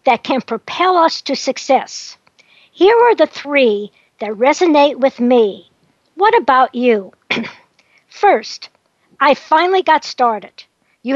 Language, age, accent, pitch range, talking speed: English, 60-79, American, 235-315 Hz, 125 wpm